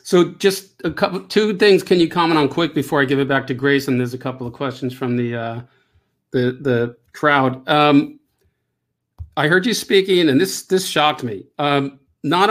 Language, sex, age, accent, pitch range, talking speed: English, male, 50-69, American, 130-155 Hz, 200 wpm